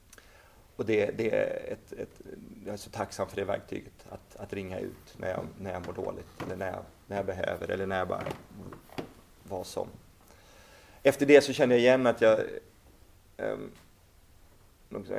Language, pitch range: Swedish, 90-105 Hz